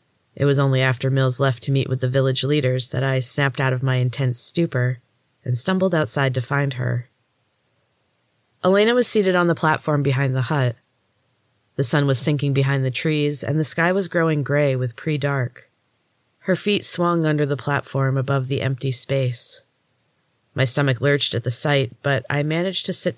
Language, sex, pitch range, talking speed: English, female, 125-150 Hz, 185 wpm